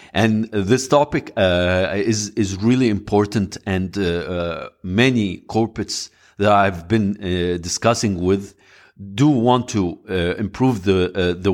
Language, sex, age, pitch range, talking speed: English, male, 50-69, 90-110 Hz, 140 wpm